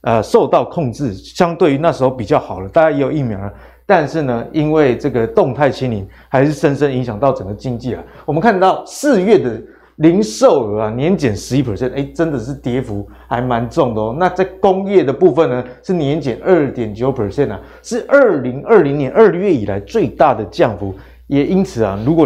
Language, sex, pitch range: Chinese, male, 125-170 Hz